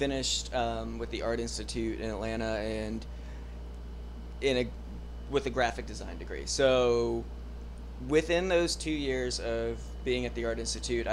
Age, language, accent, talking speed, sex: 20-39, English, American, 145 wpm, male